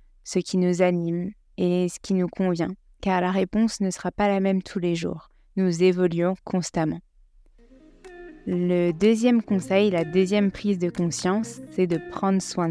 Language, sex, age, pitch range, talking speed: French, female, 20-39, 175-195 Hz, 165 wpm